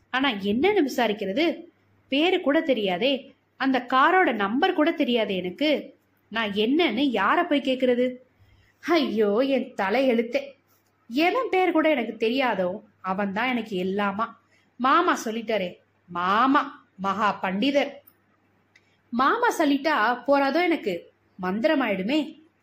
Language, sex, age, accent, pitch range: Tamil, female, 20-39, native, 220-320 Hz